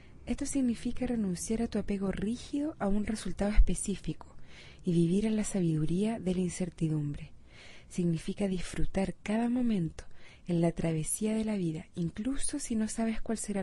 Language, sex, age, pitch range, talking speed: Spanish, female, 30-49, 160-220 Hz, 155 wpm